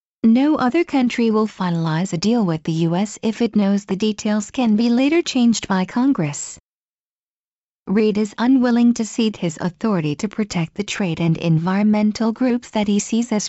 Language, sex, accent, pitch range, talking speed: English, female, American, 195-240 Hz, 175 wpm